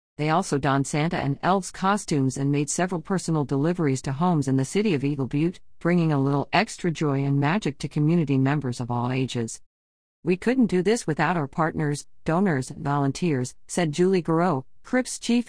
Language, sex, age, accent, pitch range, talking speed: English, female, 50-69, American, 140-180 Hz, 185 wpm